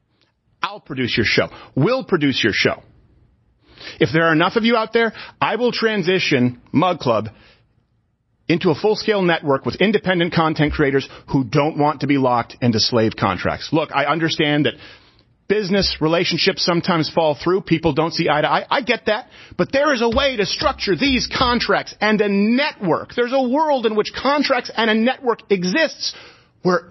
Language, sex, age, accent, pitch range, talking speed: English, male, 40-59, American, 145-220 Hz, 175 wpm